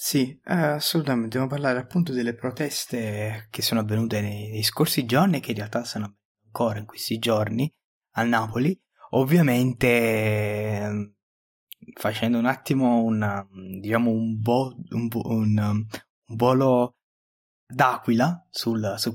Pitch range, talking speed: 105-125 Hz, 130 wpm